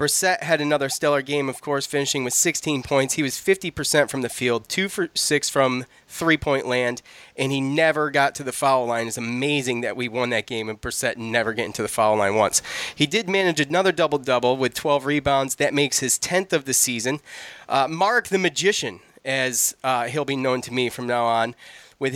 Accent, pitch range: American, 130-155 Hz